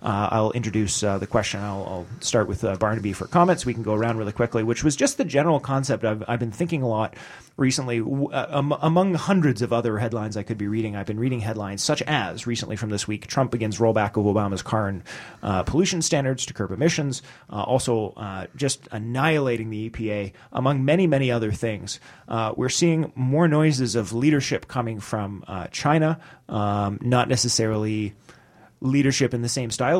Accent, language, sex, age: American, English, male, 30-49